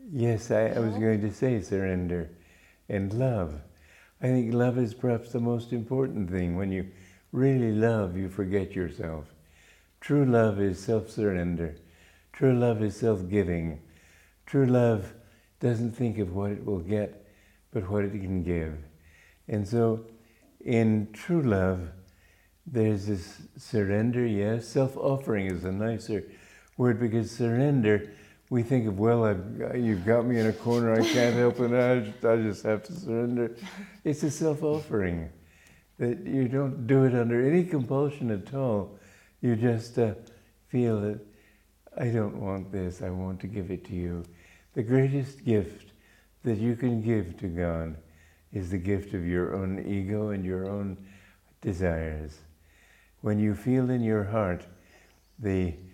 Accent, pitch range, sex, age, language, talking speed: American, 90-120 Hz, male, 60-79, English, 150 wpm